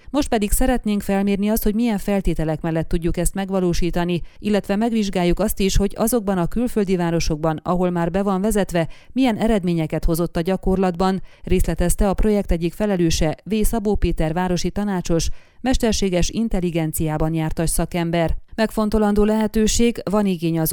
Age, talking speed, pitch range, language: 30-49, 145 wpm, 170-205 Hz, Hungarian